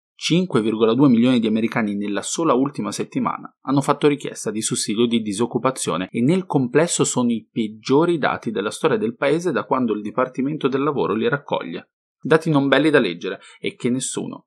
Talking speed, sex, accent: 170 wpm, male, Italian